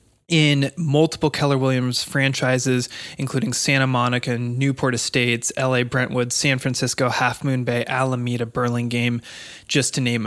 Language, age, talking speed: English, 20-39, 130 wpm